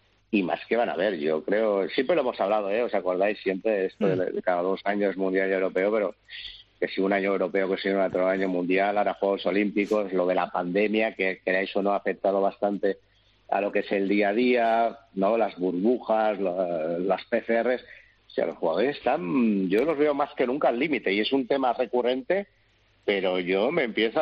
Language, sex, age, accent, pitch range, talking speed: Spanish, male, 50-69, Spanish, 95-110 Hz, 220 wpm